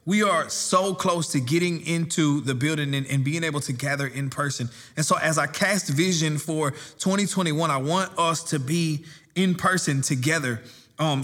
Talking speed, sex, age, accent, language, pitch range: 180 wpm, male, 20-39, American, English, 140-175 Hz